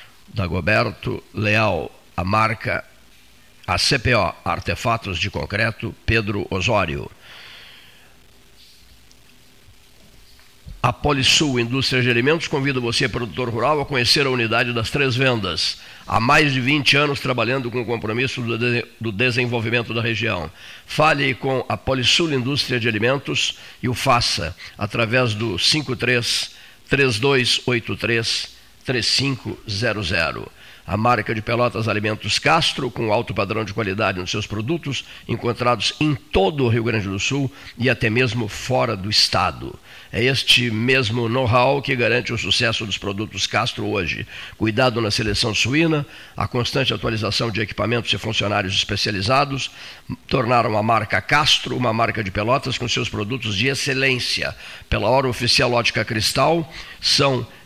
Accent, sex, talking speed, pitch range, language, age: Brazilian, male, 135 wpm, 110-130 Hz, Portuguese, 50-69